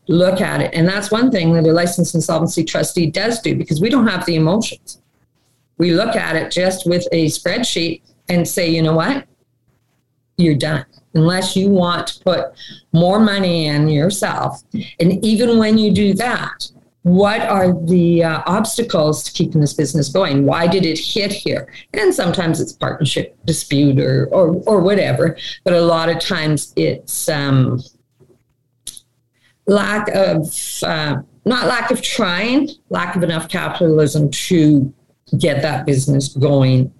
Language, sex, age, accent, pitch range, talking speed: English, female, 50-69, American, 145-190 Hz, 155 wpm